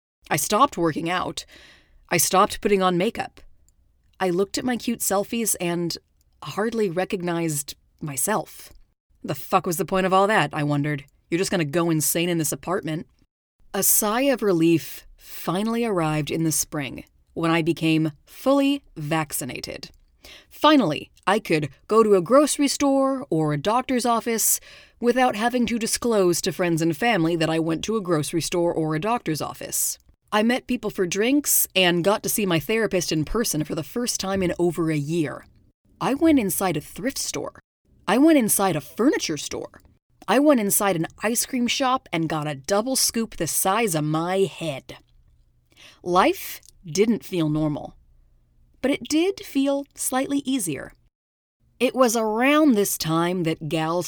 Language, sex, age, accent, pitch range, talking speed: English, female, 30-49, American, 155-225 Hz, 165 wpm